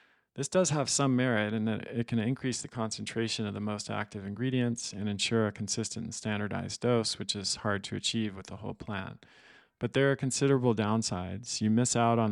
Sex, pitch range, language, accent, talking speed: male, 105-120 Hz, English, American, 205 wpm